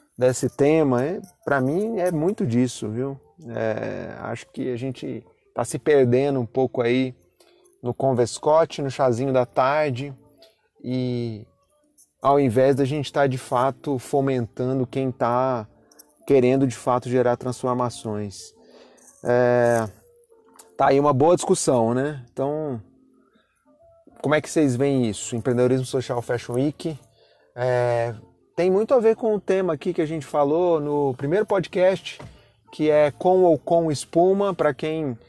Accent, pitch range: Brazilian, 125-160 Hz